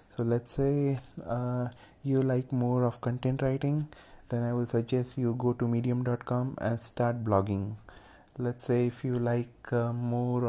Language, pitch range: English, 115-125 Hz